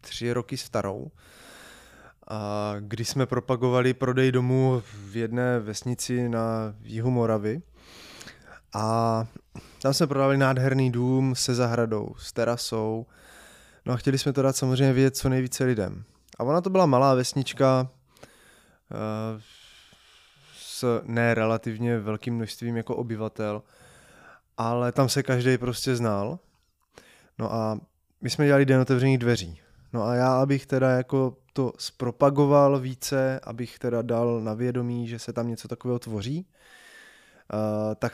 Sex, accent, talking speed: male, native, 130 wpm